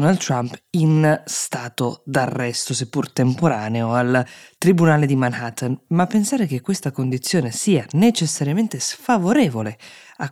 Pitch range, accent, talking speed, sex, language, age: 130-170 Hz, native, 115 wpm, female, Italian, 20-39